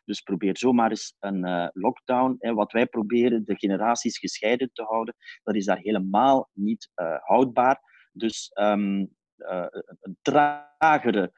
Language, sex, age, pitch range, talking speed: Dutch, male, 30-49, 100-145 Hz, 150 wpm